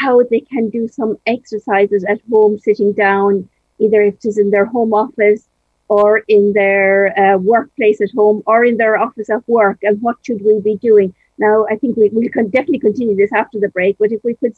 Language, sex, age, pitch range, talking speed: English, female, 50-69, 215-270 Hz, 215 wpm